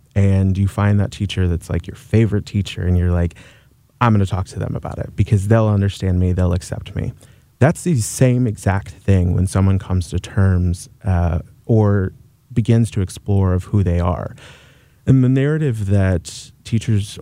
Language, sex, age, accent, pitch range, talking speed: English, male, 30-49, American, 95-115 Hz, 180 wpm